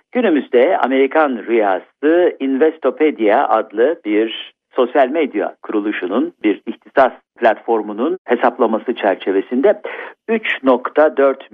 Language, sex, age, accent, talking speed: Turkish, male, 50-69, native, 80 wpm